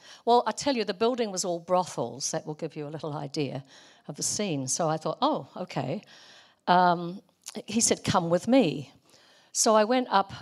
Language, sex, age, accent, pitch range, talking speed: English, female, 50-69, British, 160-230 Hz, 190 wpm